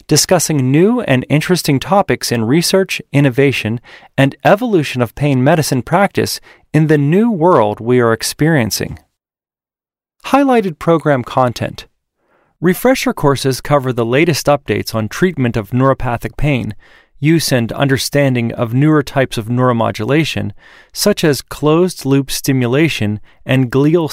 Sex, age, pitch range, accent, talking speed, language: male, 30-49, 120-165 Hz, American, 120 wpm, English